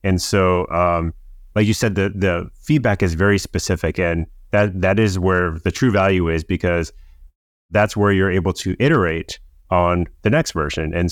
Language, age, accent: English, 30-49, American